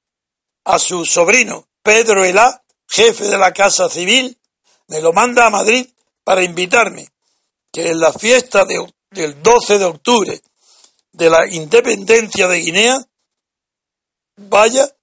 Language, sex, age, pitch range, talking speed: Spanish, male, 60-79, 185-240 Hz, 125 wpm